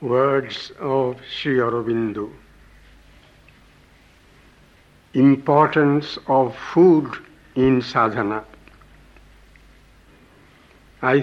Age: 60-79